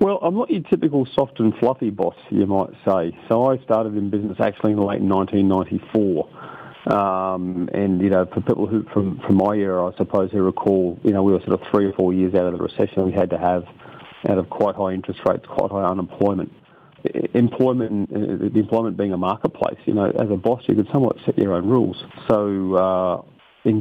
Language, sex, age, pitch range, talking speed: English, male, 40-59, 95-105 Hz, 215 wpm